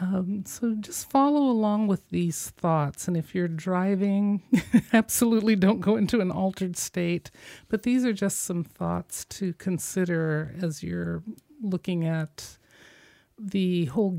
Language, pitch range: English, 145-185 Hz